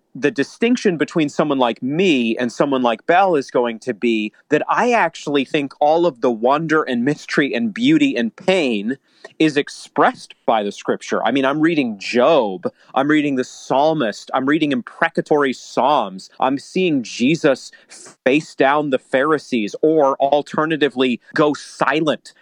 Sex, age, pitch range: male, 30-49, 125-155 Hz